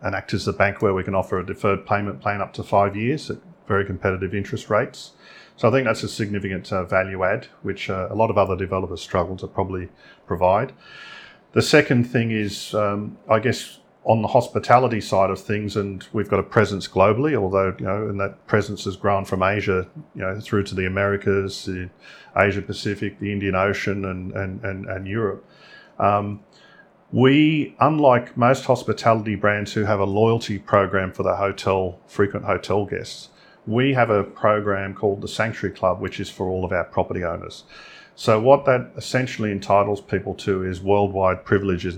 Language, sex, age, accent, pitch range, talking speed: English, male, 40-59, Australian, 95-110 Hz, 185 wpm